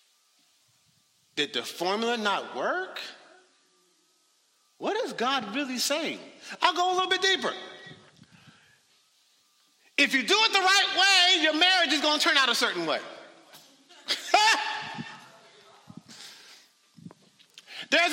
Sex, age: male, 50-69